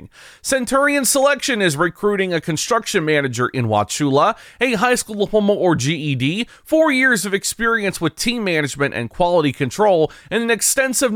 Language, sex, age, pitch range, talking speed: English, male, 30-49, 155-205 Hz, 150 wpm